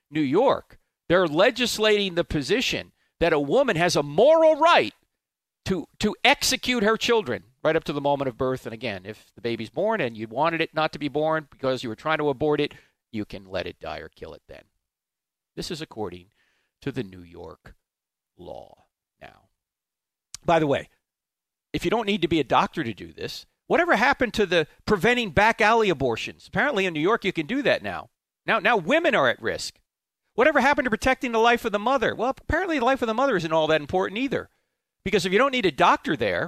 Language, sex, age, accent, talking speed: English, male, 50-69, American, 215 wpm